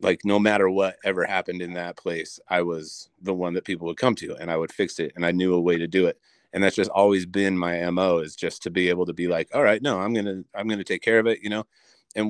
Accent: American